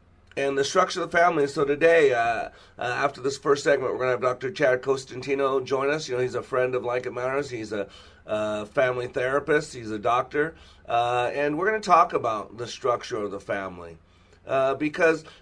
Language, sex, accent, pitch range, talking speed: English, male, American, 95-140 Hz, 205 wpm